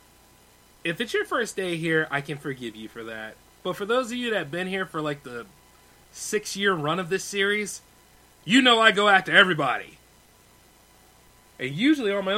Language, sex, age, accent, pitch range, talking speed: English, male, 30-49, American, 140-175 Hz, 195 wpm